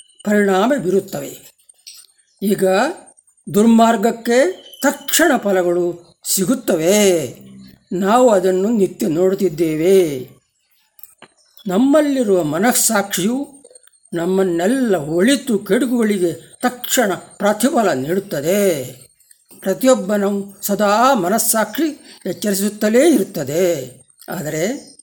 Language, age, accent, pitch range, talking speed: Kannada, 60-79, native, 175-235 Hz, 60 wpm